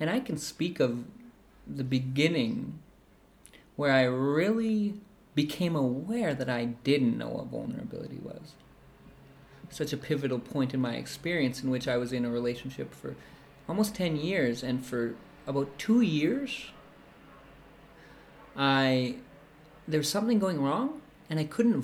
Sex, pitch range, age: male, 125-155 Hz, 30-49